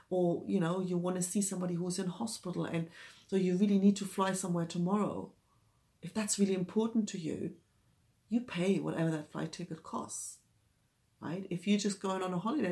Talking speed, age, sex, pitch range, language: 195 wpm, 40-59, female, 180-205 Hz, English